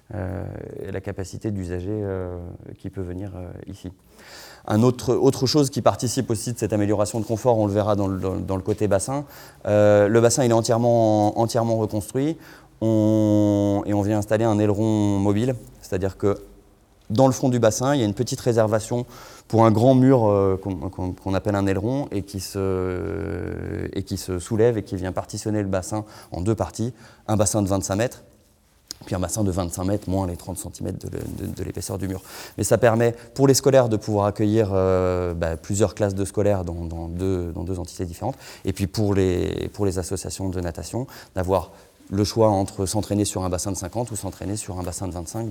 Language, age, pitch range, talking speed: French, 20-39, 95-115 Hz, 210 wpm